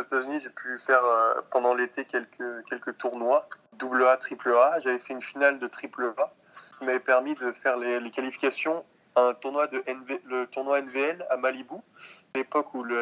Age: 20-39